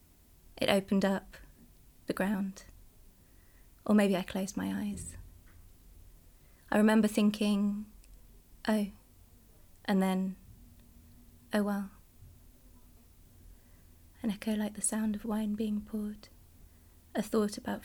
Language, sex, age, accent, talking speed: English, female, 20-39, British, 105 wpm